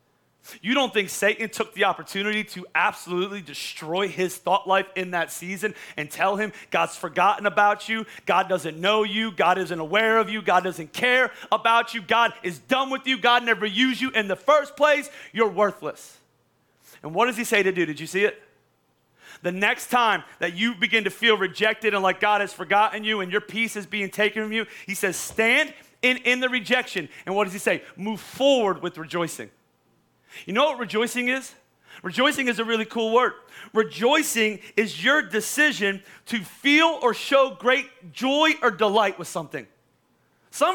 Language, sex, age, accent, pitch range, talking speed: English, male, 30-49, American, 190-250 Hz, 190 wpm